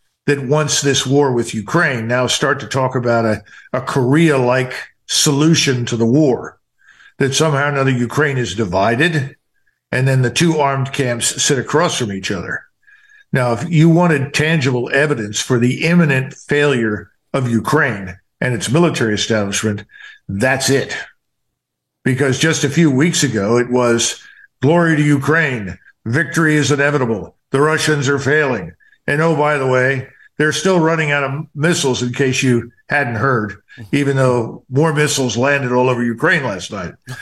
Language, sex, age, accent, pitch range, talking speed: English, male, 50-69, American, 125-150 Hz, 160 wpm